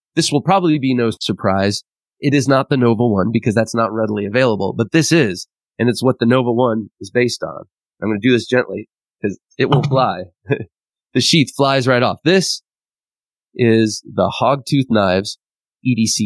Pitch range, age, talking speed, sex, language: 110-135 Hz, 30-49, 180 wpm, male, English